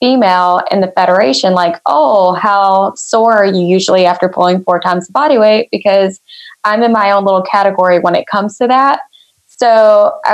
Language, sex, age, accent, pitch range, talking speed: English, female, 20-39, American, 180-220 Hz, 185 wpm